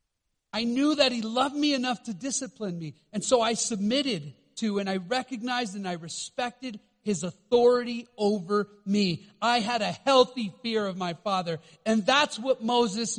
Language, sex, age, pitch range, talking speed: English, male, 40-59, 190-245 Hz, 170 wpm